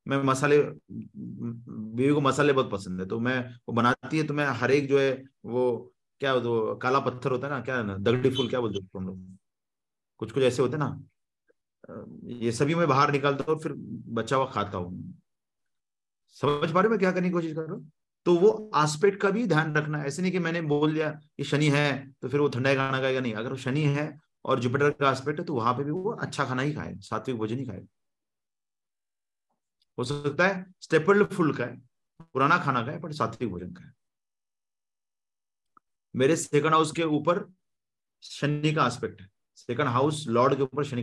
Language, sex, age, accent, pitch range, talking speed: Hindi, male, 30-49, native, 120-155 Hz, 195 wpm